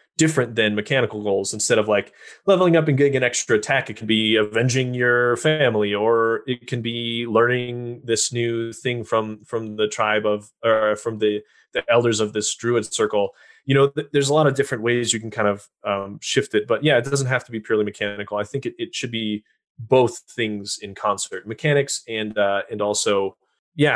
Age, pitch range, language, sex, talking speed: 20-39, 105-125 Hz, English, male, 210 wpm